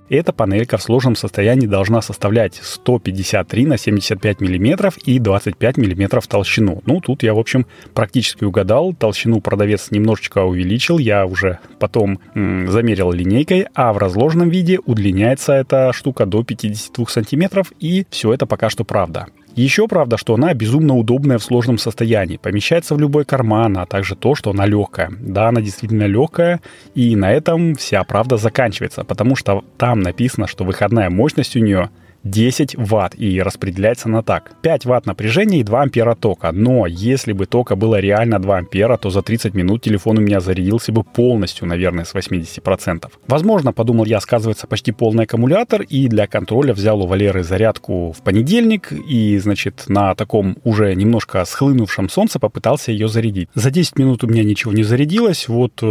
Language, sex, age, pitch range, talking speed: Russian, male, 30-49, 100-130 Hz, 165 wpm